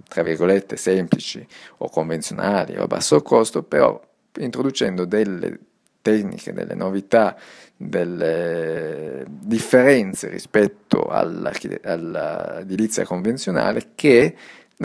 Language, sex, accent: Italian, male, native